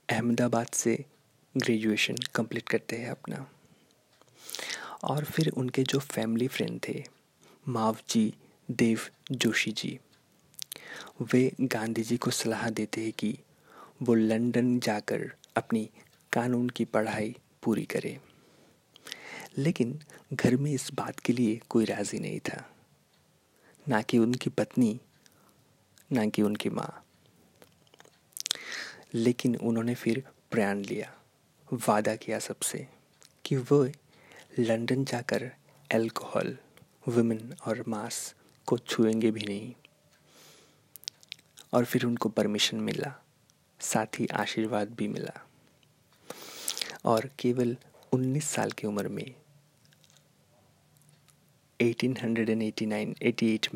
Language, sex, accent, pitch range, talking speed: Hindi, male, native, 110-135 Hz, 105 wpm